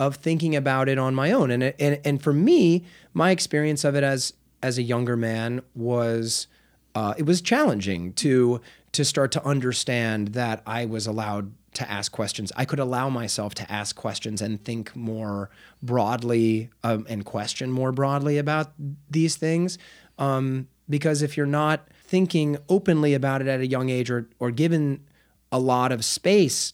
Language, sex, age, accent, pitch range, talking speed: English, male, 30-49, American, 115-155 Hz, 175 wpm